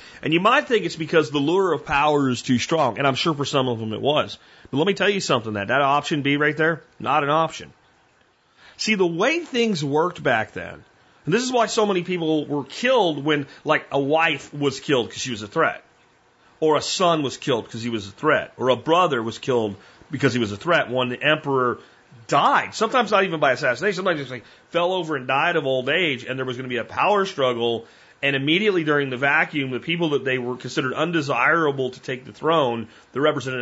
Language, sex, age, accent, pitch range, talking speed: English, male, 40-59, American, 130-170 Hz, 230 wpm